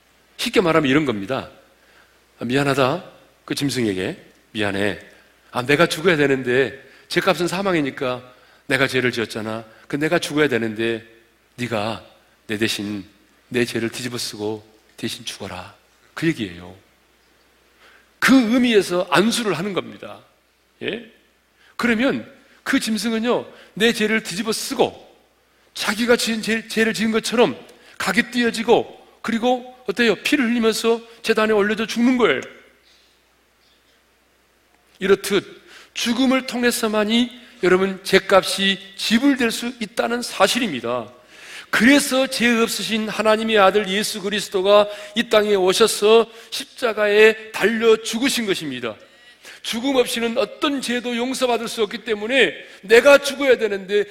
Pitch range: 155-240 Hz